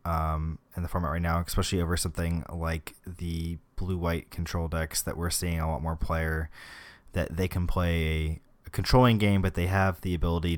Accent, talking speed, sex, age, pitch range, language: American, 185 wpm, male, 20-39, 80-95 Hz, English